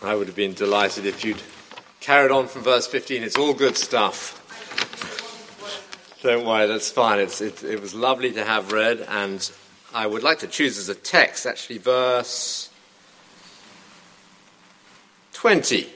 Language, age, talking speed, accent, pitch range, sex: English, 50-69, 145 wpm, British, 100-140 Hz, male